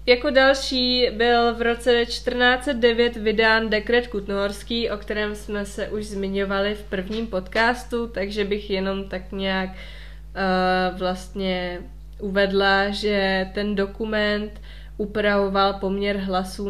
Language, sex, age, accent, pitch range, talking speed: Czech, female, 20-39, native, 195-235 Hz, 115 wpm